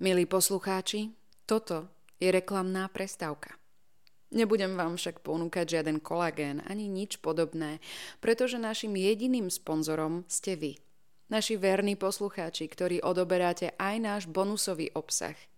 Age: 20-39